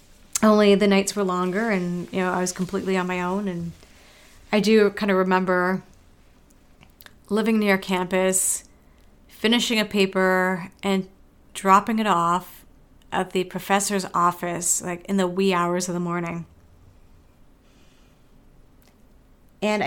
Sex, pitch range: female, 175-195 Hz